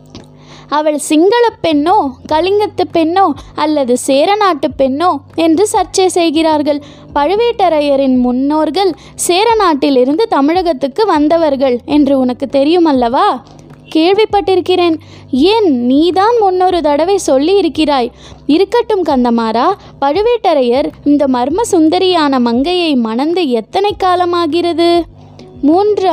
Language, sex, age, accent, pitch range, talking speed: Tamil, female, 20-39, native, 285-370 Hz, 85 wpm